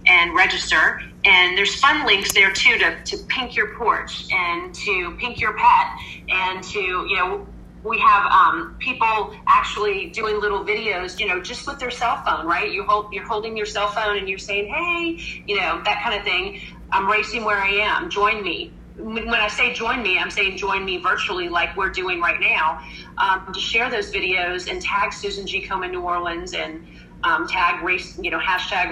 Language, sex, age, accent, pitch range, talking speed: English, female, 30-49, American, 180-220 Hz, 200 wpm